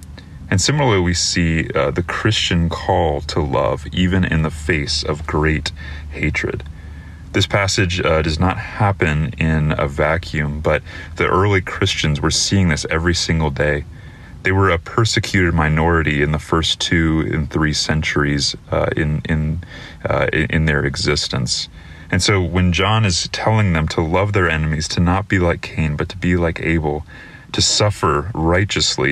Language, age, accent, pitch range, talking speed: English, 30-49, American, 75-95 Hz, 165 wpm